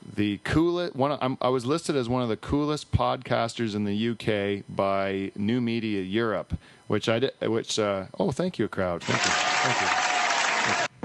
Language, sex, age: English, male, 40-59